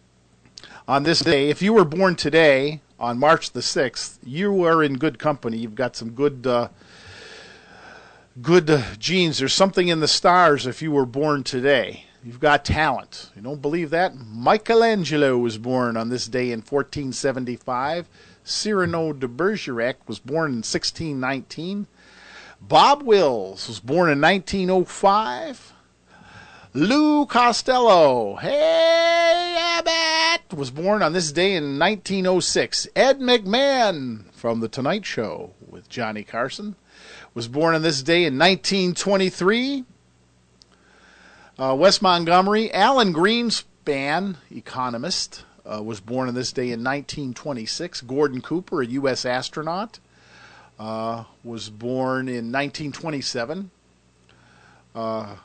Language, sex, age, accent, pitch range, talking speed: English, male, 50-69, American, 120-185 Hz, 125 wpm